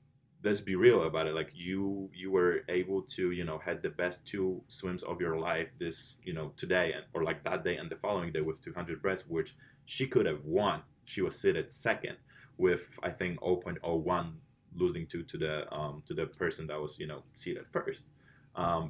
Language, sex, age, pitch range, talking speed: English, male, 20-39, 80-135 Hz, 205 wpm